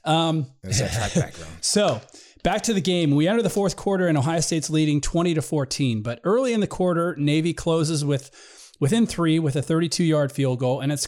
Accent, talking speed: American, 195 wpm